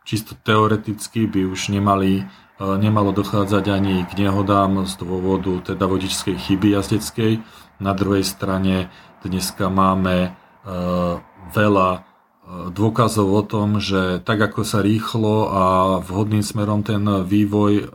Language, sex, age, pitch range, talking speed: Slovak, male, 40-59, 95-110 Hz, 115 wpm